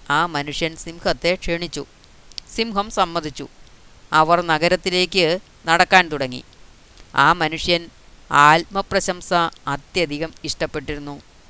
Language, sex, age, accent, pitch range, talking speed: Malayalam, female, 30-49, native, 155-185 Hz, 80 wpm